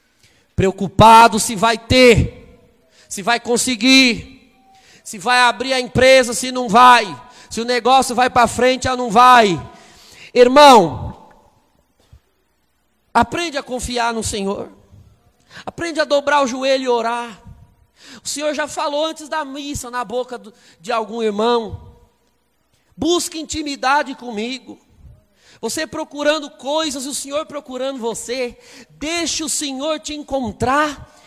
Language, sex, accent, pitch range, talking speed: Portuguese, male, Brazilian, 230-305 Hz, 125 wpm